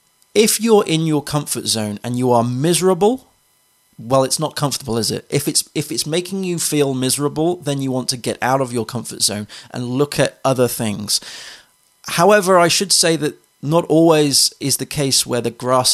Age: 30-49